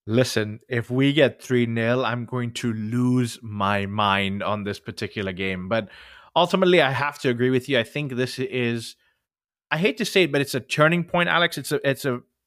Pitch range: 115-145 Hz